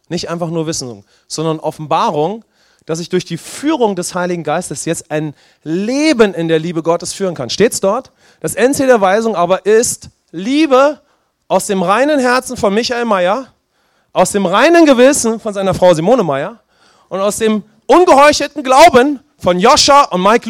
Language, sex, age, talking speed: English, male, 30-49, 170 wpm